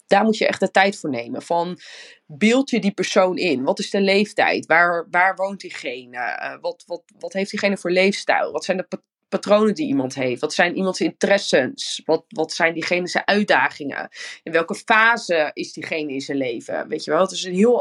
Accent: Dutch